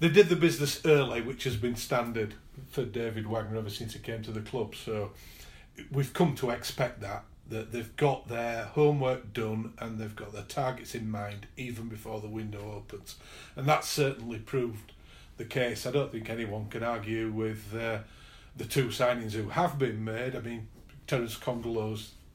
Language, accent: English, British